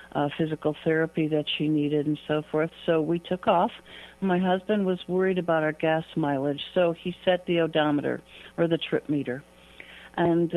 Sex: female